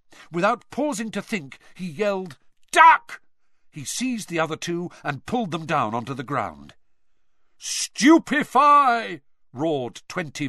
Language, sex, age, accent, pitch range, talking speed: English, male, 50-69, British, 130-190 Hz, 125 wpm